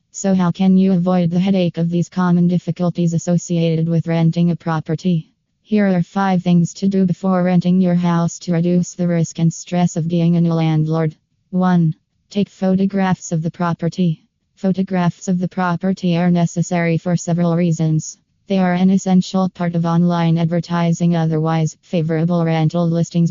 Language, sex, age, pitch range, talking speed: English, female, 20-39, 160-175 Hz, 165 wpm